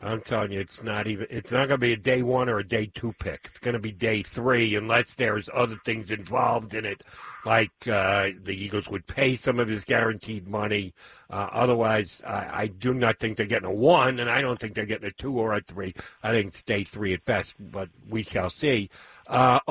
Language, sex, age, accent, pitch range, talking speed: English, male, 60-79, American, 110-170 Hz, 235 wpm